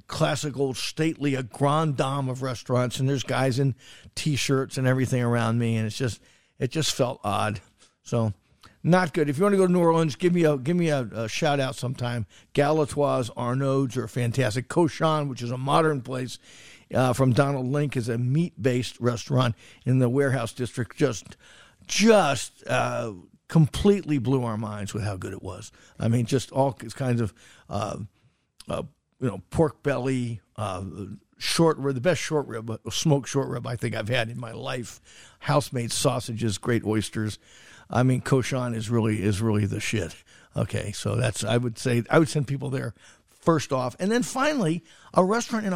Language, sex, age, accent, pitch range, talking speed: English, male, 50-69, American, 120-155 Hz, 180 wpm